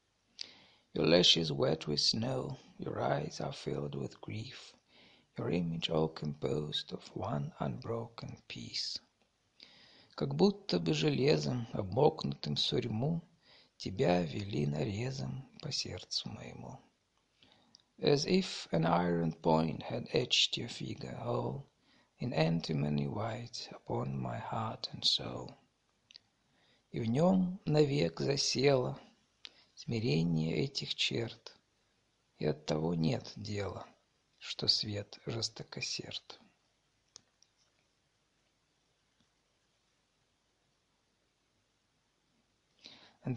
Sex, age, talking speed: male, 50-69, 85 wpm